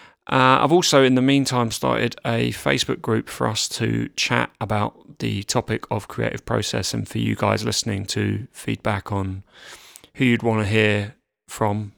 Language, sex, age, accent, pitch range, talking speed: English, male, 30-49, British, 105-125 Hz, 170 wpm